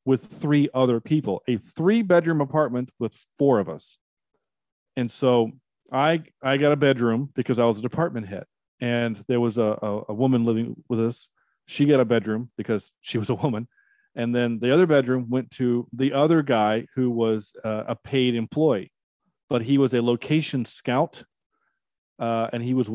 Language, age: English, 40-59